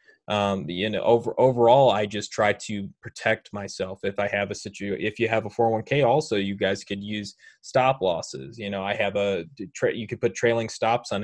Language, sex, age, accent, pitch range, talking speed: English, male, 20-39, American, 105-130 Hz, 215 wpm